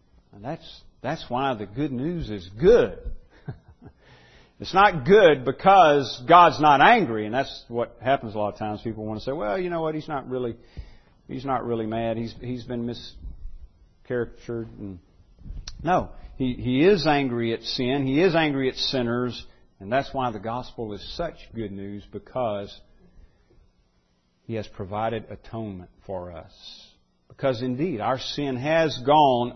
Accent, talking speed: American, 160 wpm